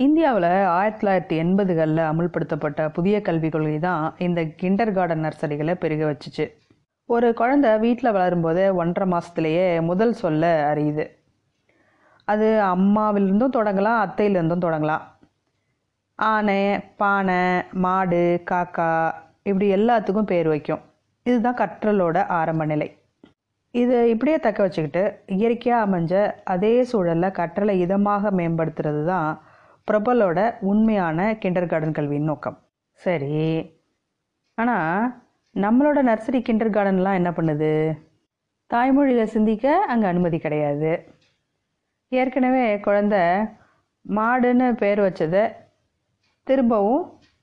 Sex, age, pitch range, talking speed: female, 30-49, 160-220 Hz, 100 wpm